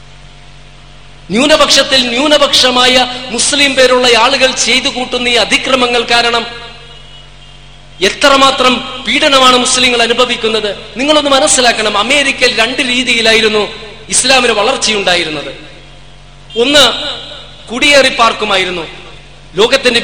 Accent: native